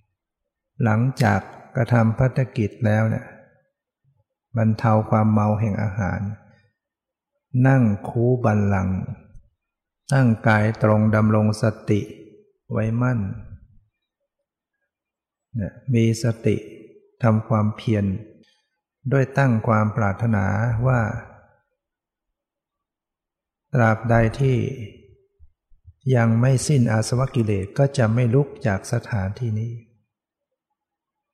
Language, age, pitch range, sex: English, 60-79, 110-130 Hz, male